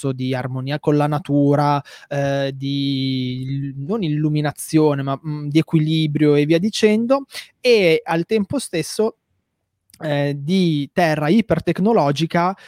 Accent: native